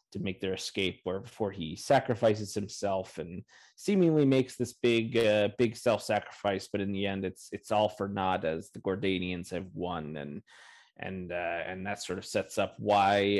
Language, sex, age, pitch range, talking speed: English, male, 30-49, 95-115 Hz, 185 wpm